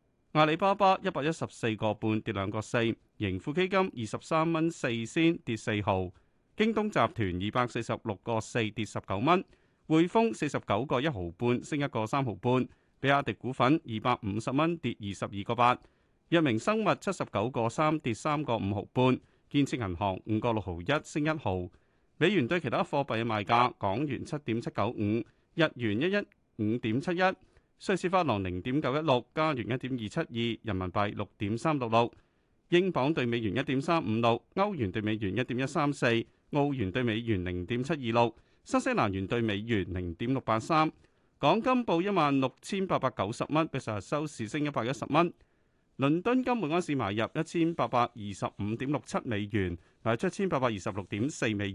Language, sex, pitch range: Chinese, male, 110-155 Hz